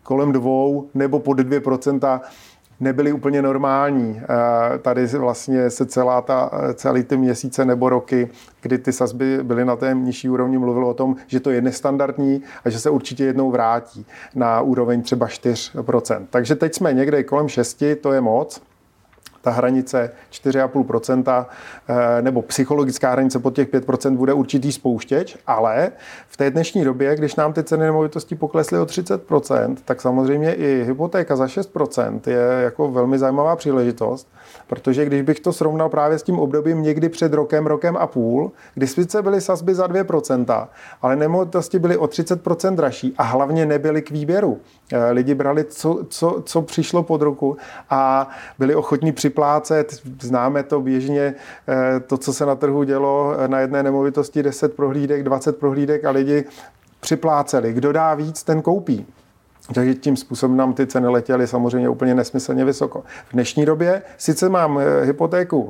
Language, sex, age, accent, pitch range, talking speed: Czech, male, 40-59, native, 130-150 Hz, 160 wpm